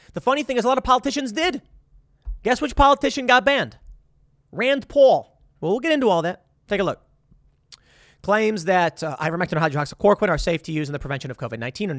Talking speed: 205 wpm